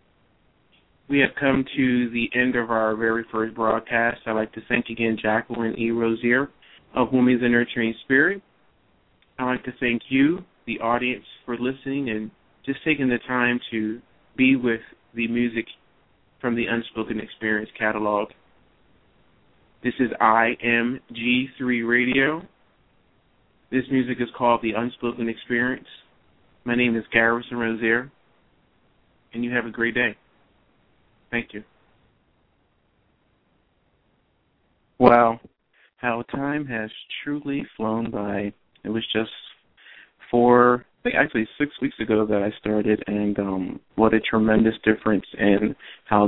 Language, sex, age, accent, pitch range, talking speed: English, male, 30-49, American, 110-125 Hz, 130 wpm